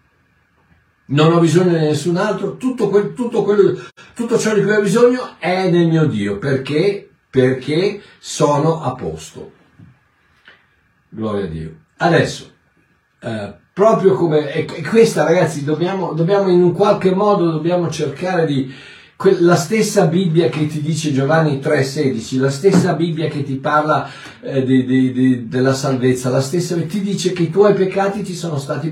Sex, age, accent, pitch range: male, 60-79, native, 140-190 Hz